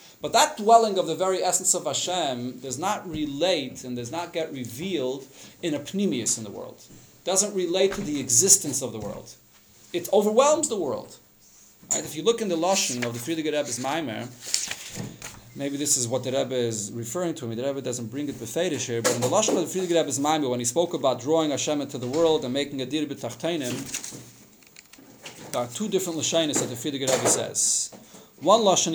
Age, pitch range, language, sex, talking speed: 30-49, 130-175 Hz, English, male, 205 wpm